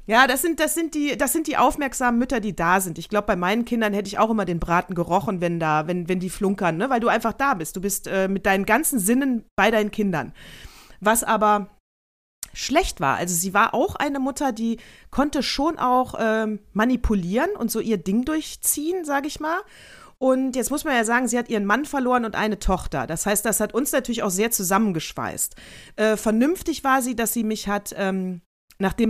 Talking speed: 215 wpm